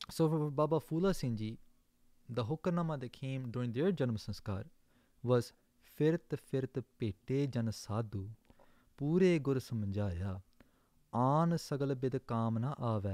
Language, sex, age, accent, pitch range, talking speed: English, male, 20-39, Indian, 115-160 Hz, 85 wpm